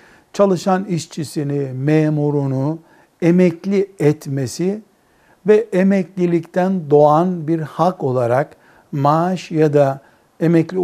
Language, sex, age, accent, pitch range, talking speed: Turkish, male, 60-79, native, 145-185 Hz, 85 wpm